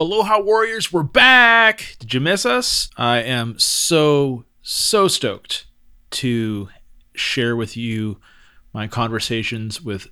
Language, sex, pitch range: English, male, 105-140 Hz